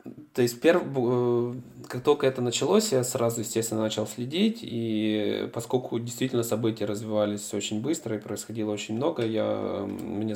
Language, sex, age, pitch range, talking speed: Russian, male, 20-39, 105-115 Hz, 135 wpm